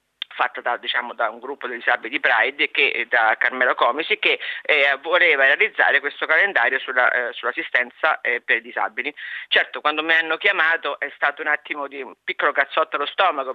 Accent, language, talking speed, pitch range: native, Italian, 185 wpm, 145-205 Hz